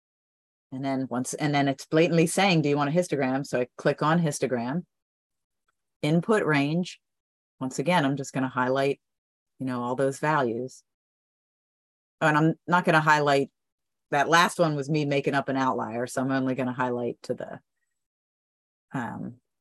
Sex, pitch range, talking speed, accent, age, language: female, 125-165 Hz, 170 wpm, American, 30-49, English